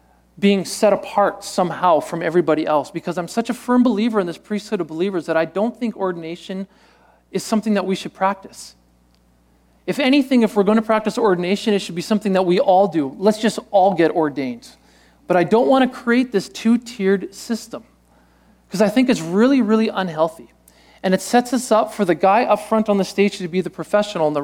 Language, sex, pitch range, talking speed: English, male, 160-215 Hz, 210 wpm